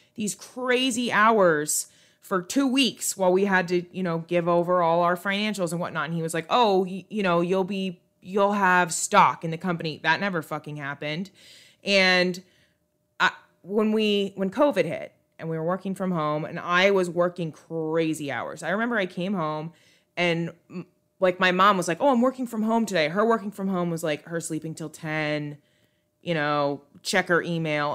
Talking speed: 190 wpm